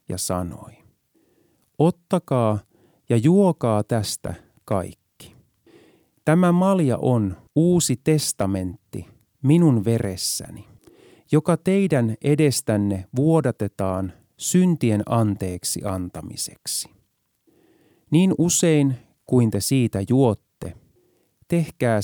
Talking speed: 75 wpm